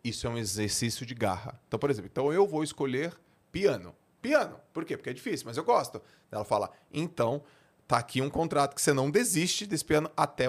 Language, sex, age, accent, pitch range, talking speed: Portuguese, male, 40-59, Brazilian, 110-140 Hz, 205 wpm